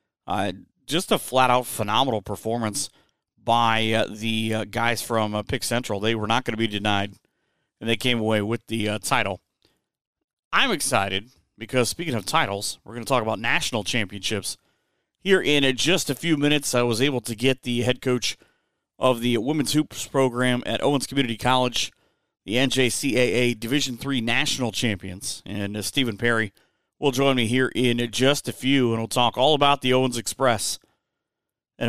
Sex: male